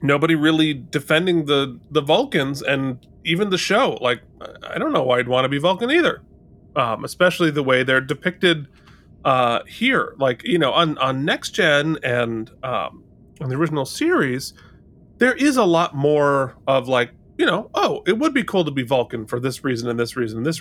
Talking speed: 195 wpm